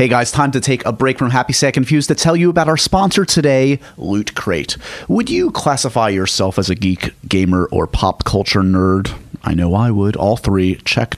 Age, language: 30-49, English